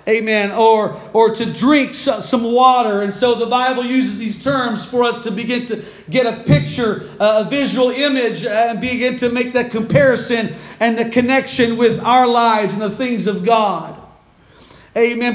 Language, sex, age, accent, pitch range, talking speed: English, male, 40-59, American, 215-270 Hz, 170 wpm